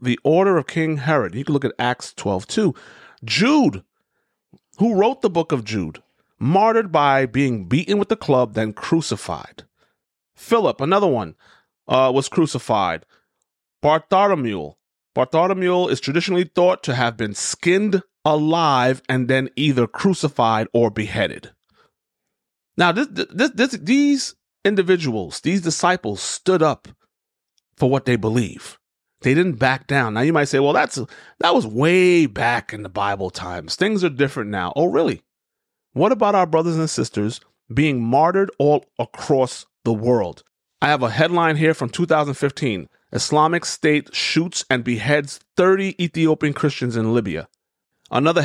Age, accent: 30-49, American